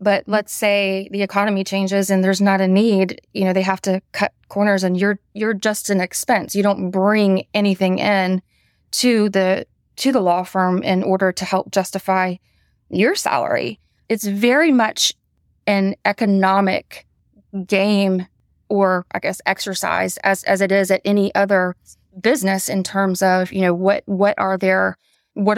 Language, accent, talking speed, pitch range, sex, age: English, American, 165 wpm, 190-205 Hz, female, 20-39